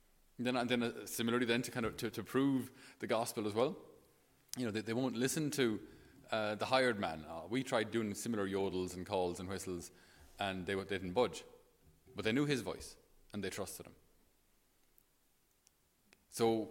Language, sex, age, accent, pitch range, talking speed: English, male, 30-49, Irish, 95-120 Hz, 195 wpm